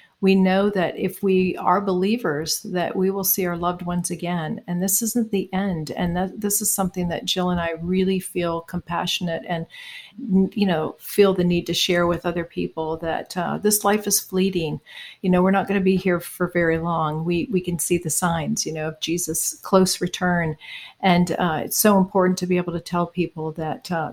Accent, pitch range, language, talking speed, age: American, 170-195 Hz, English, 210 wpm, 50-69